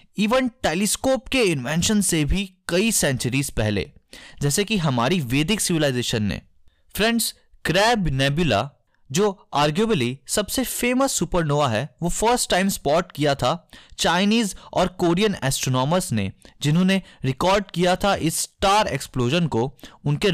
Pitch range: 130-205 Hz